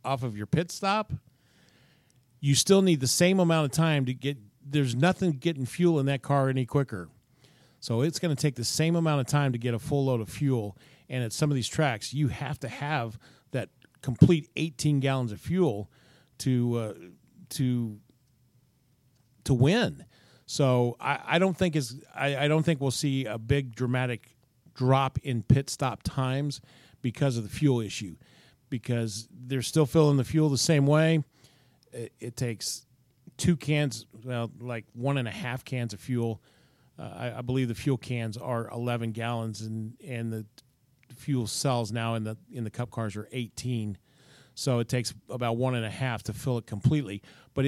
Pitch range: 120-145 Hz